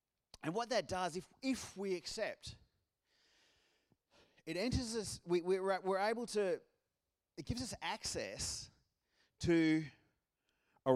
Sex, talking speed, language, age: male, 120 wpm, English, 30-49